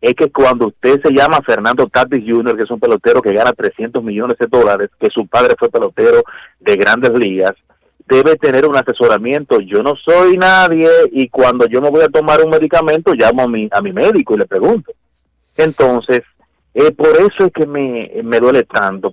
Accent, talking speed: Venezuelan, 200 wpm